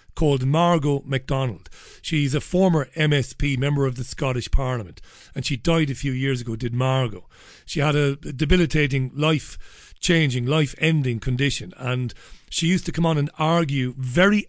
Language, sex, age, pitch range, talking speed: English, male, 40-59, 125-155 Hz, 155 wpm